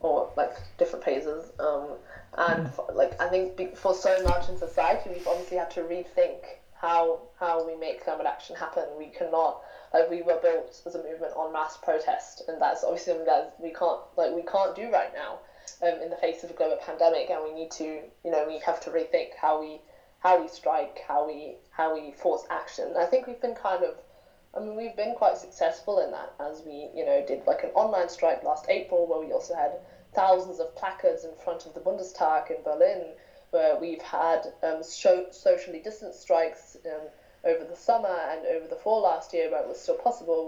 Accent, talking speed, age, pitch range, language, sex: British, 210 wpm, 10-29, 160-210 Hz, German, female